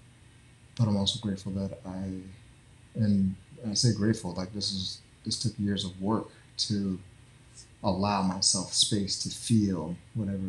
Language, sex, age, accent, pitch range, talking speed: English, male, 30-49, American, 100-125 Hz, 145 wpm